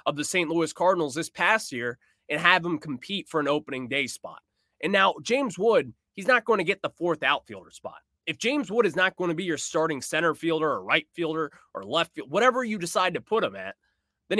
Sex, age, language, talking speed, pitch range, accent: male, 20-39, English, 235 wpm, 150-205 Hz, American